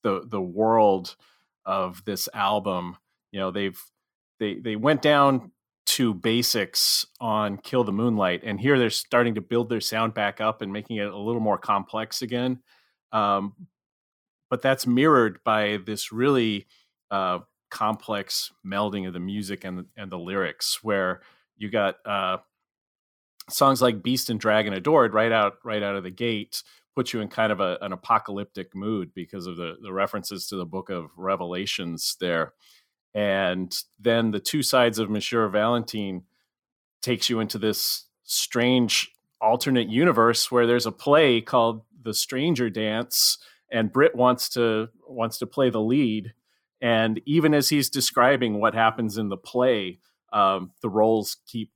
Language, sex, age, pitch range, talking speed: English, male, 30-49, 100-120 Hz, 160 wpm